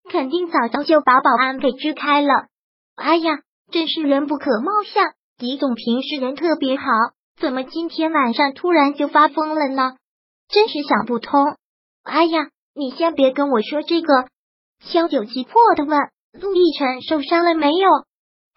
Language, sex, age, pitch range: Chinese, male, 20-39, 270-330 Hz